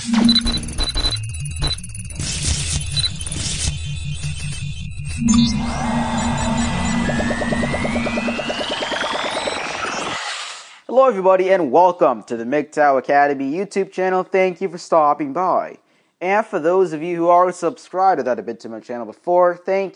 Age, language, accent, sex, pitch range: 20-39, English, American, male, 125-185 Hz